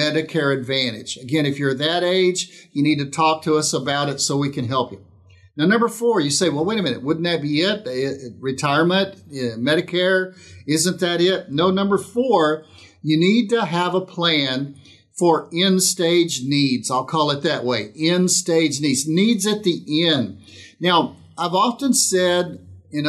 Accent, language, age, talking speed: American, English, 50-69, 175 wpm